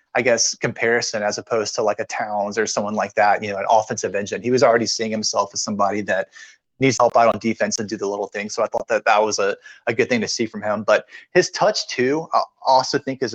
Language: English